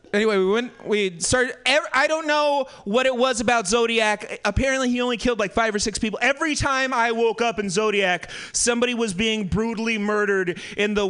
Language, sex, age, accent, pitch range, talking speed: English, male, 30-49, American, 215-255 Hz, 200 wpm